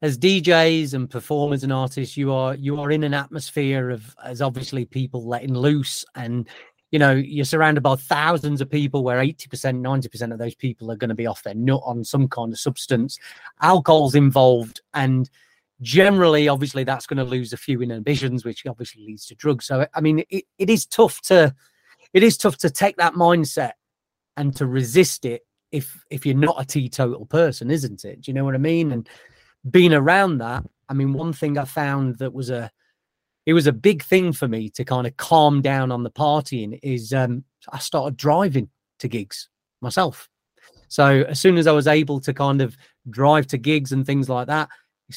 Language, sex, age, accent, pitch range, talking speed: English, male, 30-49, British, 125-150 Hz, 200 wpm